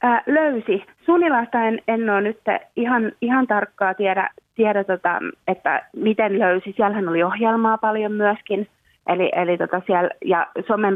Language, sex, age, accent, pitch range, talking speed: Finnish, female, 30-49, native, 170-200 Hz, 150 wpm